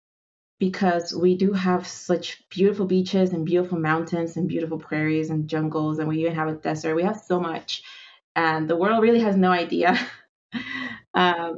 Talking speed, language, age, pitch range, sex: 170 wpm, English, 20-39, 160-190 Hz, female